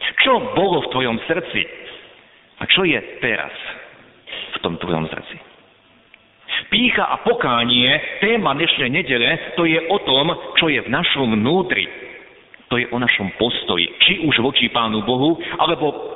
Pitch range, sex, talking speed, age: 110-160 Hz, male, 145 wpm, 50-69